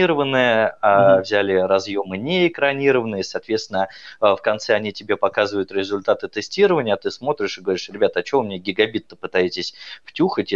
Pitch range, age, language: 100-145 Hz, 20-39, Russian